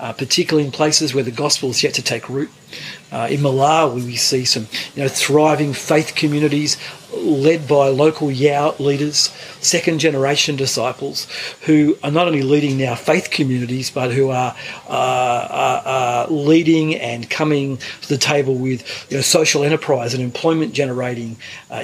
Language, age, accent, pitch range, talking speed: English, 40-59, Australian, 130-155 Hz, 160 wpm